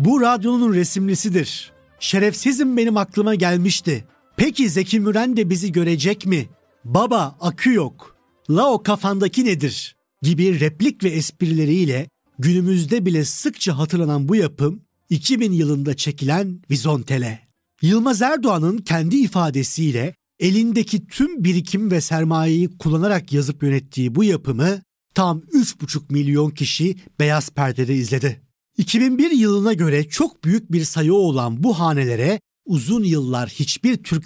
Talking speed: 125 wpm